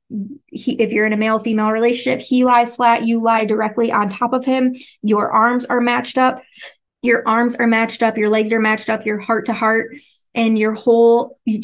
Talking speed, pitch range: 195 wpm, 210-235 Hz